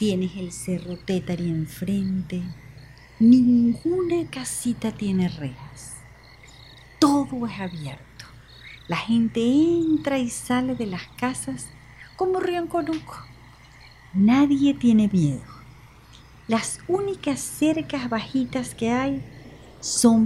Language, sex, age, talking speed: Spanish, female, 50-69, 95 wpm